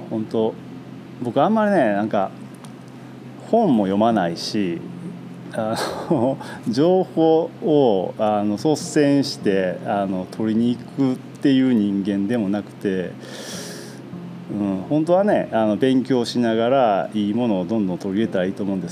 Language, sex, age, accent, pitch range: Japanese, male, 40-59, native, 100-140 Hz